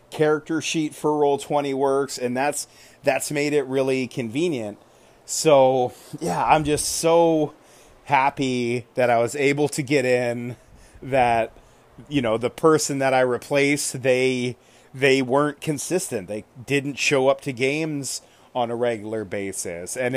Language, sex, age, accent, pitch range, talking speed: English, male, 30-49, American, 120-145 Hz, 145 wpm